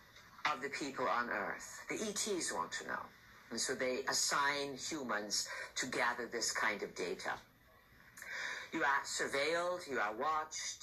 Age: 50-69